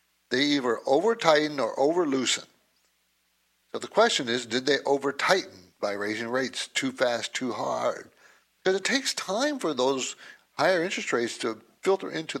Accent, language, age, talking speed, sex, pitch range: American, English, 60-79, 150 wpm, male, 140-200 Hz